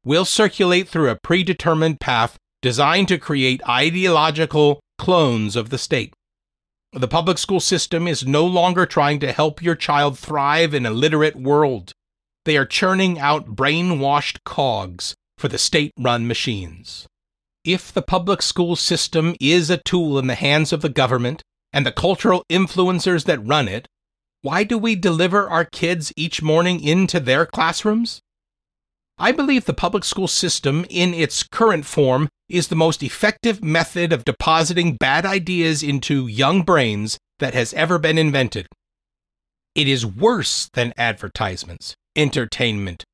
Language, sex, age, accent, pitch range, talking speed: English, male, 40-59, American, 135-180 Hz, 145 wpm